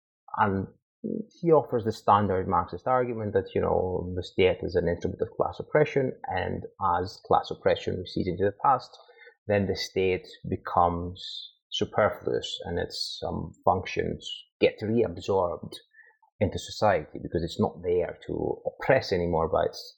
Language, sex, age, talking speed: English, male, 30-49, 145 wpm